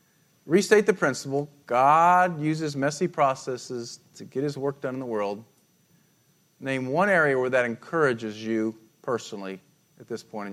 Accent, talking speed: American, 155 wpm